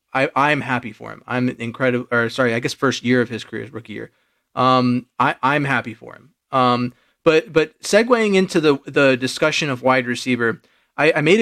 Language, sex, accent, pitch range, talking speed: English, male, American, 125-155 Hz, 200 wpm